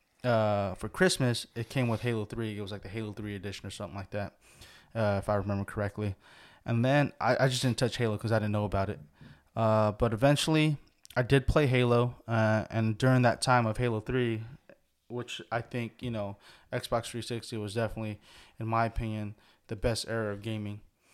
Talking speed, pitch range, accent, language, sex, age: 200 wpm, 105-125 Hz, American, English, male, 20-39